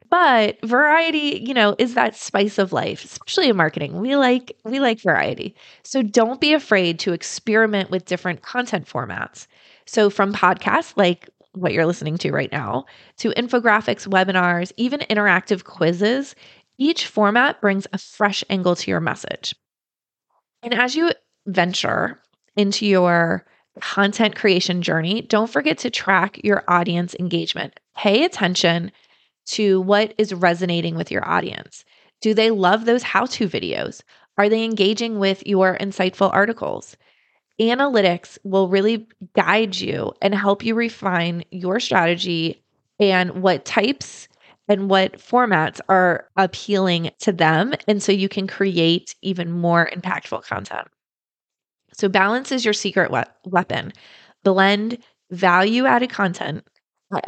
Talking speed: 135 wpm